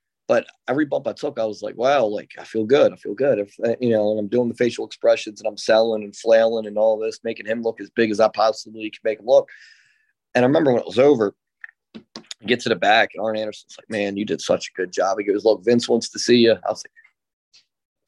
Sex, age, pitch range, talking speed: male, 30-49, 105-120 Hz, 260 wpm